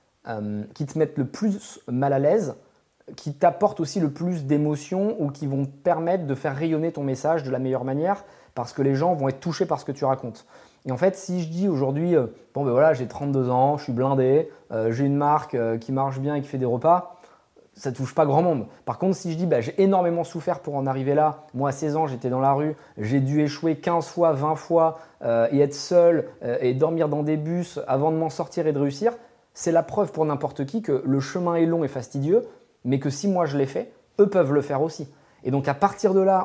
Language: French